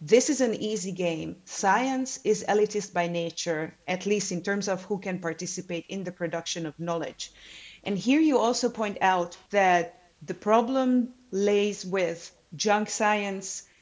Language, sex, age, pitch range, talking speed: English, female, 30-49, 175-210 Hz, 155 wpm